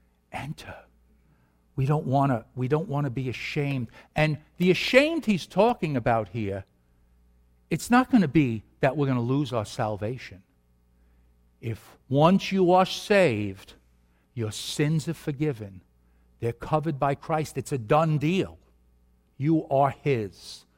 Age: 60-79